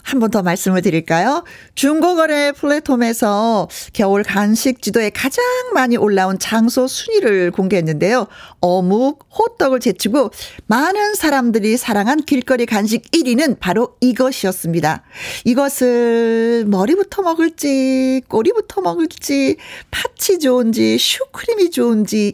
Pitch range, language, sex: 205-310 Hz, Korean, female